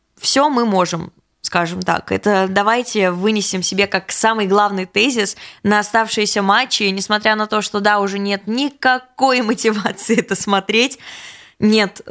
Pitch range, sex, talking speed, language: 195-230 Hz, female, 140 wpm, Russian